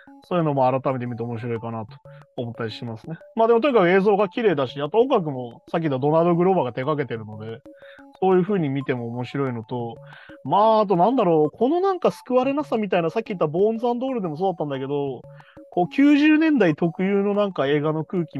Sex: male